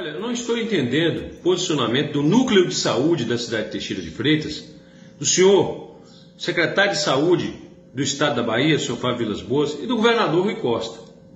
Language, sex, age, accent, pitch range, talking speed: Portuguese, male, 40-59, Brazilian, 155-200 Hz, 185 wpm